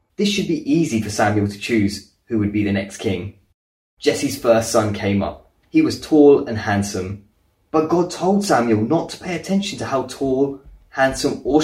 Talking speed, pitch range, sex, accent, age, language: 190 wpm, 100-155 Hz, male, British, 20-39, English